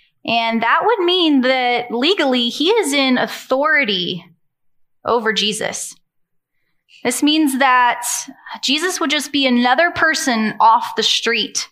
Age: 20-39